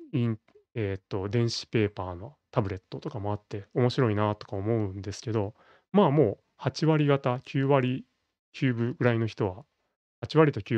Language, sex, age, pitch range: Japanese, male, 30-49, 105-130 Hz